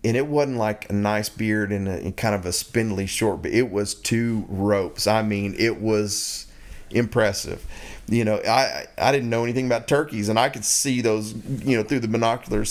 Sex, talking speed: male, 210 wpm